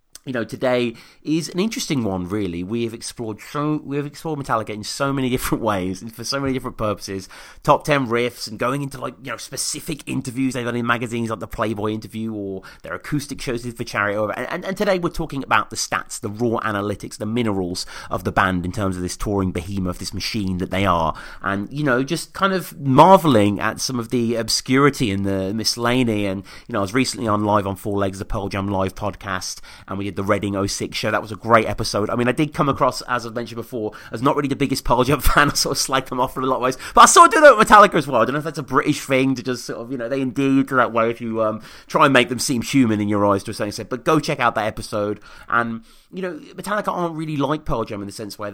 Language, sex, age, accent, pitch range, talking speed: English, male, 30-49, British, 105-135 Hz, 265 wpm